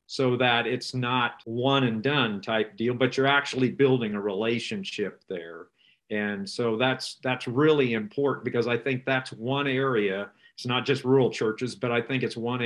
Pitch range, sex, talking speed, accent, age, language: 110-130 Hz, male, 180 wpm, American, 50-69, English